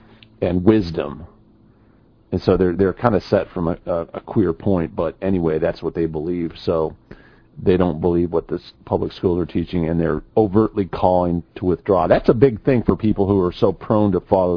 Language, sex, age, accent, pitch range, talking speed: English, male, 40-59, American, 85-100 Hz, 200 wpm